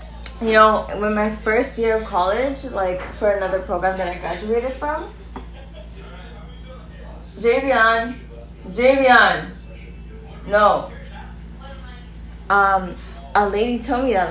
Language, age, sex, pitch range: English, 10-29, female, 170-210 Hz